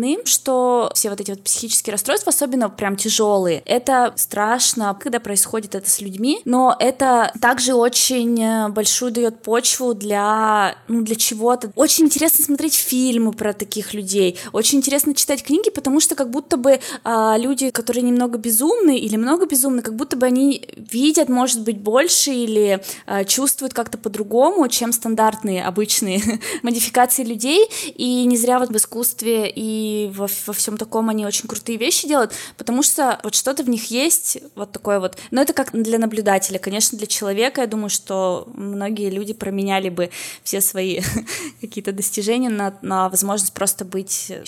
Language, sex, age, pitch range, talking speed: Russian, female, 20-39, 210-260 Hz, 165 wpm